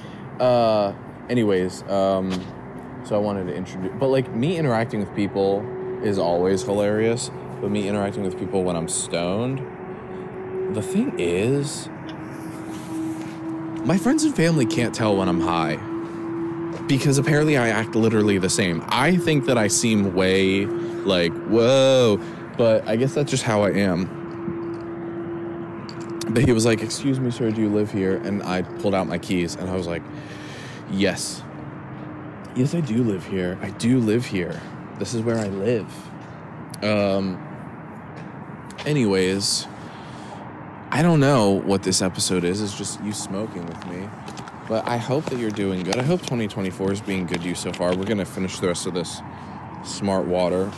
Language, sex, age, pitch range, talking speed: English, male, 20-39, 95-145 Hz, 160 wpm